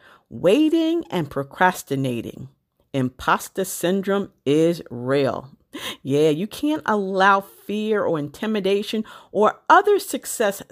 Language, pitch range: English, 160-245 Hz